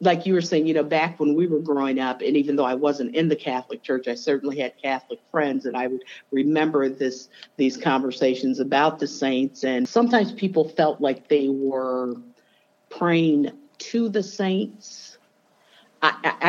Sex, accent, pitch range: female, American, 135-165 Hz